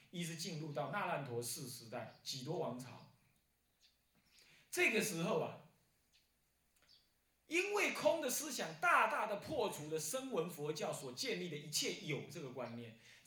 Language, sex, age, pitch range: Chinese, male, 30-49, 125-200 Hz